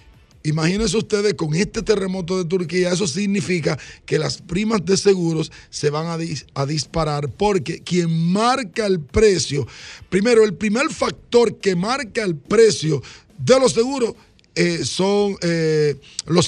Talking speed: 145 wpm